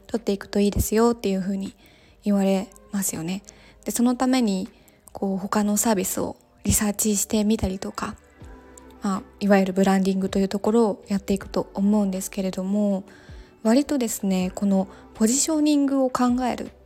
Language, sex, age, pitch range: Japanese, female, 20-39, 195-255 Hz